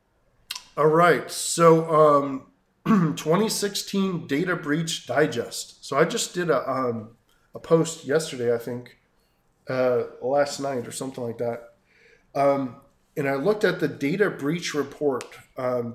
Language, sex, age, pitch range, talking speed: English, male, 20-39, 130-165 Hz, 135 wpm